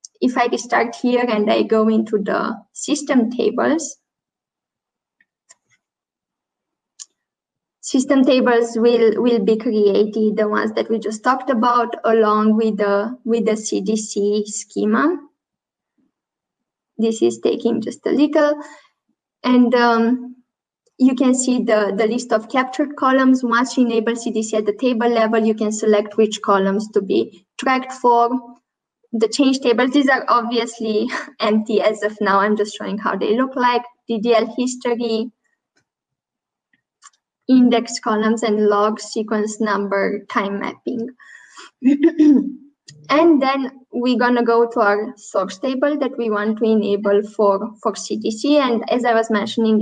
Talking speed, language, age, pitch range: 135 wpm, English, 20-39, 215-260 Hz